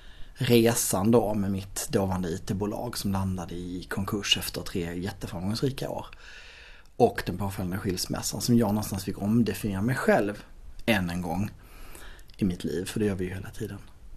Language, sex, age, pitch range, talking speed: Swedish, male, 30-49, 100-135 Hz, 160 wpm